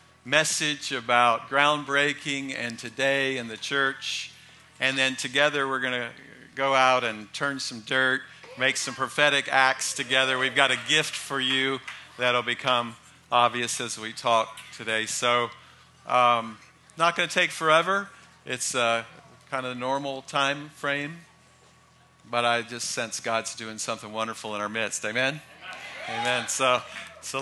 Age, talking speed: 50-69, 145 wpm